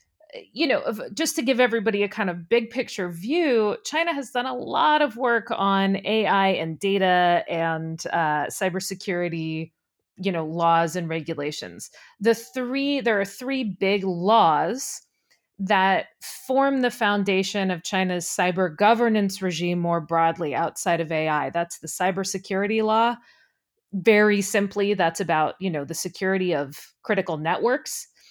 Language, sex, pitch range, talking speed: English, female, 175-225 Hz, 140 wpm